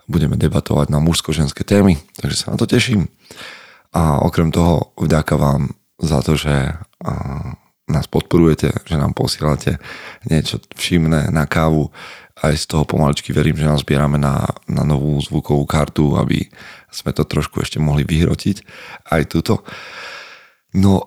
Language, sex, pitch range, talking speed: Slovak, male, 75-90 Hz, 140 wpm